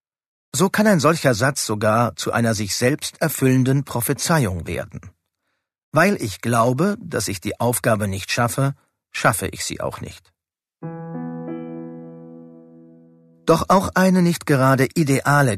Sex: male